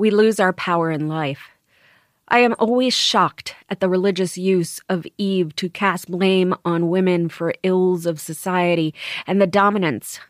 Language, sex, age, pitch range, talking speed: English, female, 30-49, 170-205 Hz, 165 wpm